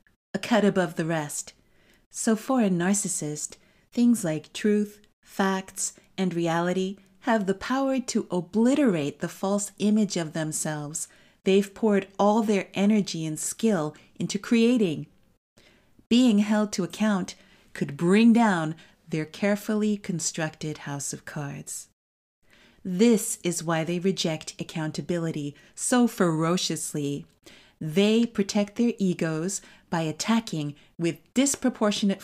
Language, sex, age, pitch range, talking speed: English, female, 40-59, 165-215 Hz, 115 wpm